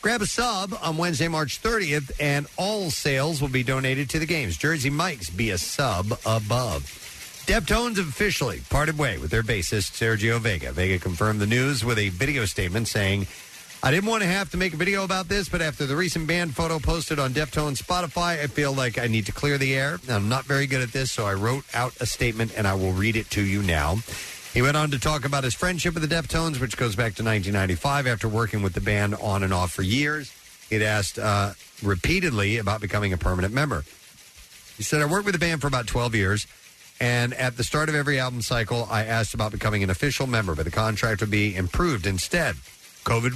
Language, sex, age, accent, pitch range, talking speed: English, male, 50-69, American, 105-150 Hz, 220 wpm